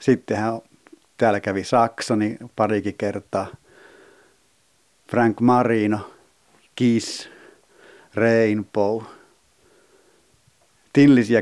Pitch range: 105-125 Hz